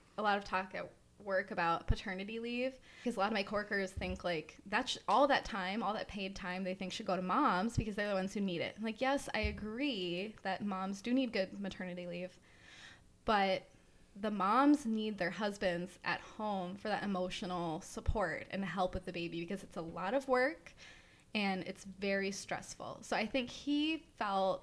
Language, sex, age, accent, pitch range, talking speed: English, female, 20-39, American, 185-225 Hz, 200 wpm